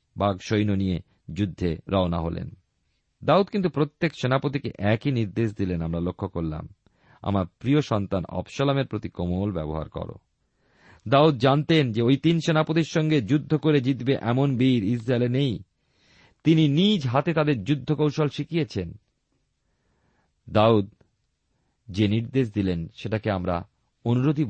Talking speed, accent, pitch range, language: 125 wpm, native, 95-140 Hz, Bengali